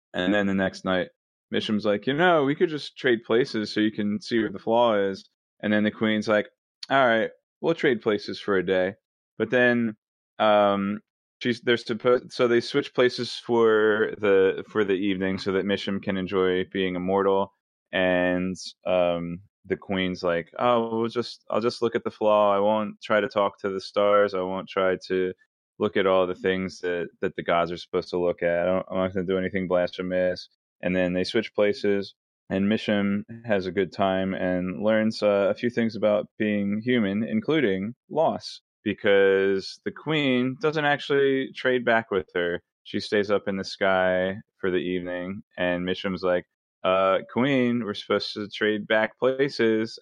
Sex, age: male, 20-39